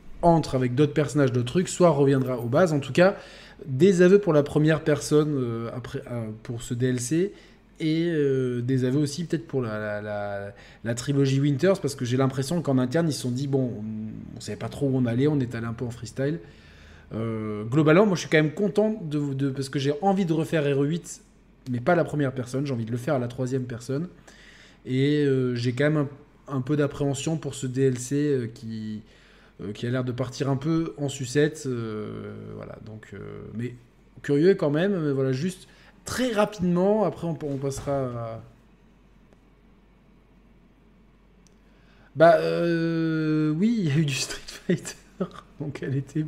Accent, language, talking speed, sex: French, French, 195 wpm, male